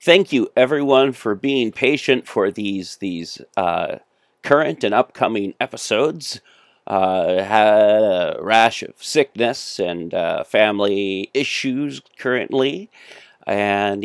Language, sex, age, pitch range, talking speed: English, male, 40-59, 105-130 Hz, 110 wpm